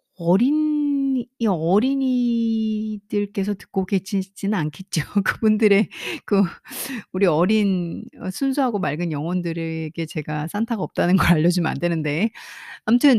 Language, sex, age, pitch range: Korean, female, 40-59, 180-270 Hz